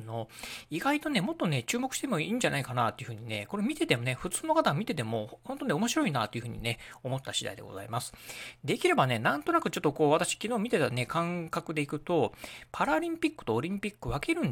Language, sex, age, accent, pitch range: Japanese, male, 40-59, native, 120-190 Hz